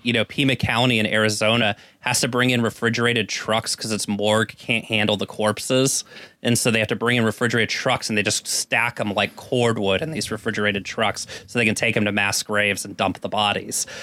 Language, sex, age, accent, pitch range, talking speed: English, male, 20-39, American, 115-155 Hz, 220 wpm